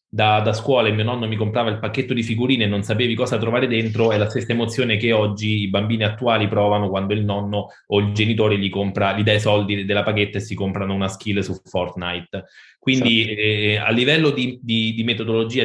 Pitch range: 105-125 Hz